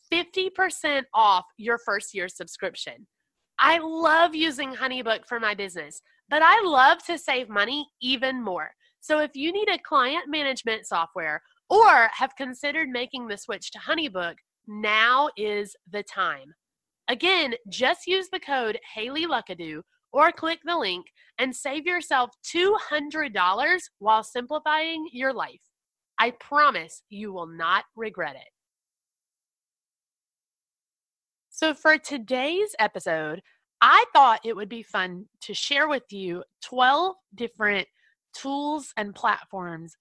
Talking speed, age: 125 wpm, 30-49